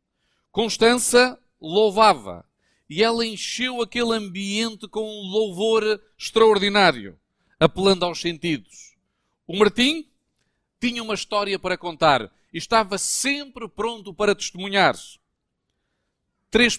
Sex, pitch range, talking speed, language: male, 185-225 Hz, 100 wpm, Portuguese